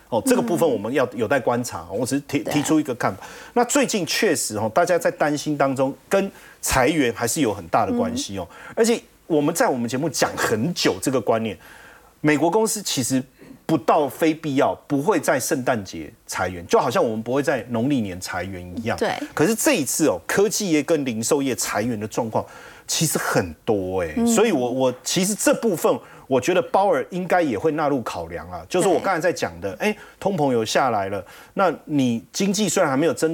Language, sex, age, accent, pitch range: Chinese, male, 30-49, native, 135-220 Hz